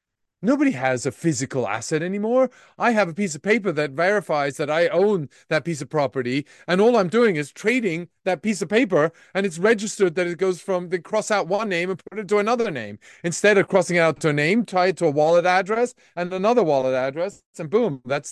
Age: 30-49